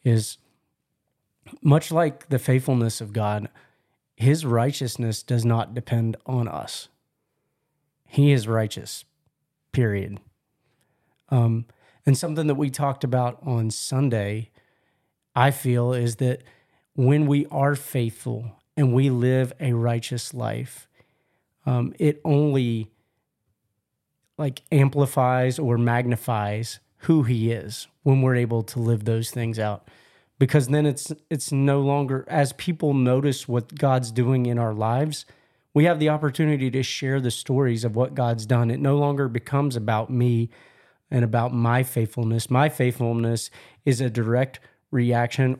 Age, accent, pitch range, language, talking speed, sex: 30-49, American, 115-140 Hz, English, 135 wpm, male